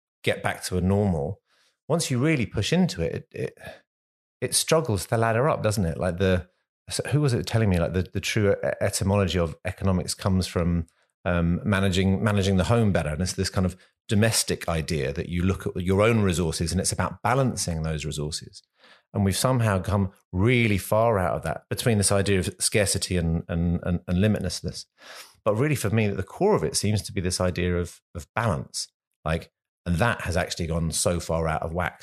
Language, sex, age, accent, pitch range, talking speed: English, male, 30-49, British, 85-110 Hz, 200 wpm